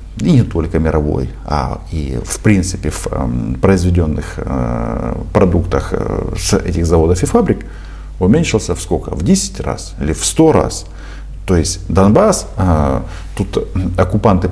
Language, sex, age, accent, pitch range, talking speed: Russian, male, 50-69, native, 85-105 Hz, 125 wpm